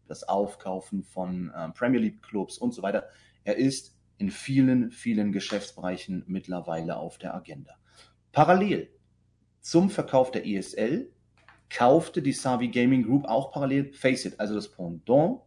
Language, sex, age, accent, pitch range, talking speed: German, male, 30-49, German, 100-145 Hz, 145 wpm